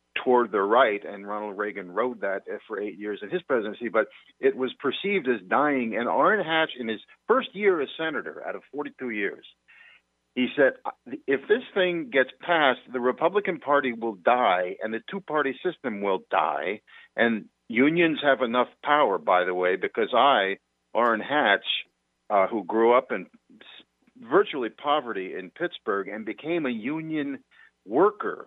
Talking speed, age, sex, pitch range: 160 wpm, 50-69, male, 110-180 Hz